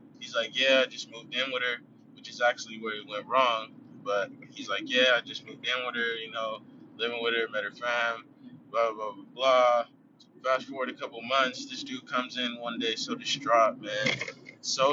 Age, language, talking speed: 20-39, English, 215 wpm